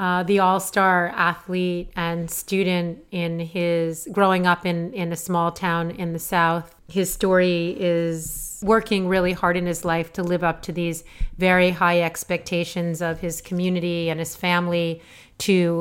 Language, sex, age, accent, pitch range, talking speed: English, female, 30-49, American, 165-185 Hz, 160 wpm